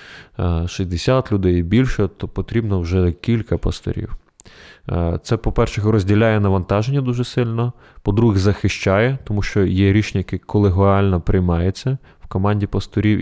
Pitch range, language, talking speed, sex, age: 90-105 Hz, Ukrainian, 120 wpm, male, 20-39